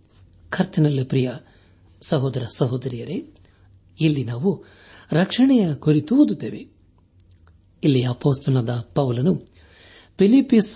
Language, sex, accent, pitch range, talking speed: Kannada, male, native, 100-150 Hz, 75 wpm